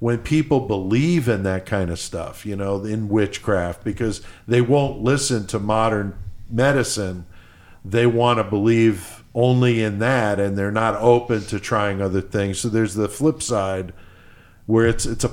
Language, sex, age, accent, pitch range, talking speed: English, male, 50-69, American, 95-115 Hz, 170 wpm